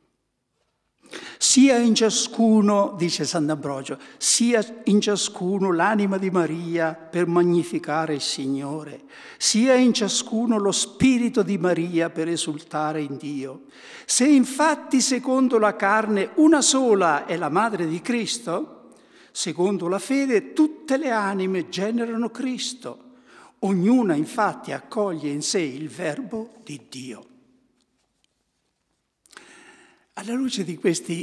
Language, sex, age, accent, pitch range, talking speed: Italian, male, 60-79, native, 165-255 Hz, 115 wpm